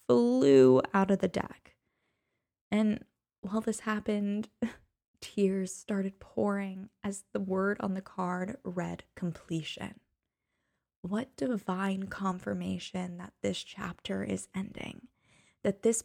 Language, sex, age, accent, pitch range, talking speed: English, female, 10-29, American, 175-205 Hz, 110 wpm